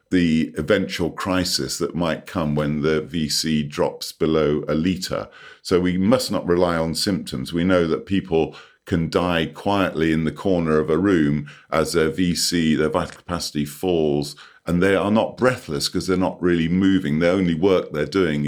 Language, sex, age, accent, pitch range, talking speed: English, female, 50-69, British, 75-95 Hz, 180 wpm